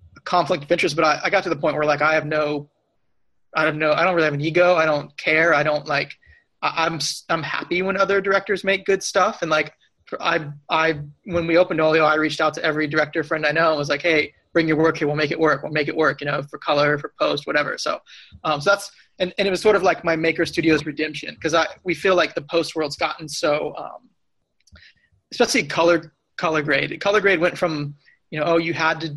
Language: English